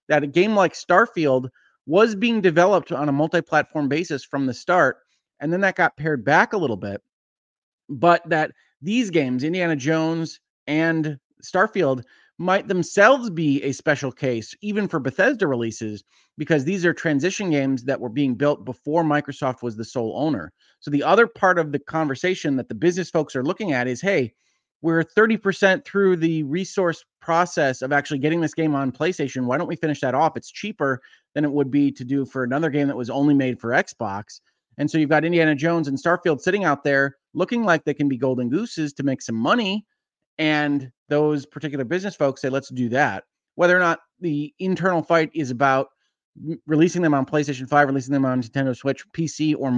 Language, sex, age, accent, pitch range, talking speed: English, male, 30-49, American, 135-170 Hz, 195 wpm